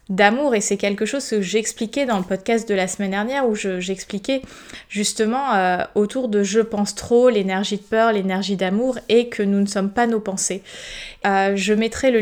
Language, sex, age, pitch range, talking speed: French, female, 20-39, 200-235 Hz, 200 wpm